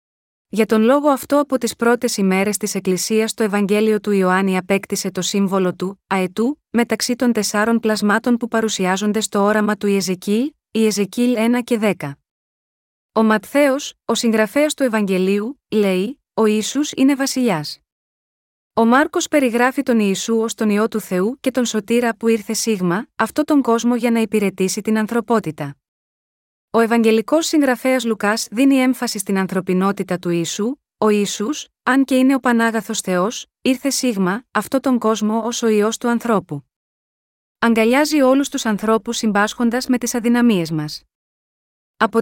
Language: Greek